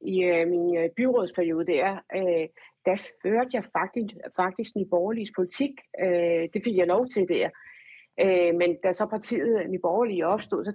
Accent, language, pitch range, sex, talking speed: native, Danish, 175-220 Hz, female, 175 wpm